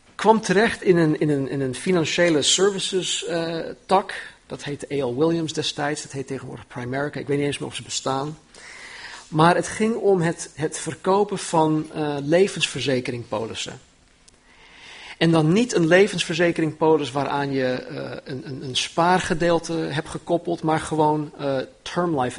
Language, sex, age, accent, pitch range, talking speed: Dutch, male, 40-59, Dutch, 140-175 Hz, 155 wpm